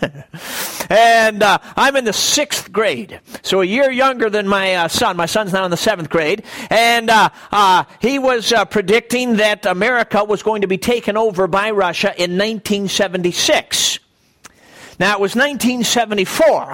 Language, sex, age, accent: English, male, 50-69, American